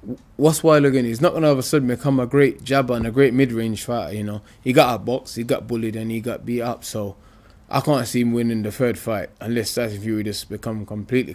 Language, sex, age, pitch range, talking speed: English, male, 20-39, 105-125 Hz, 265 wpm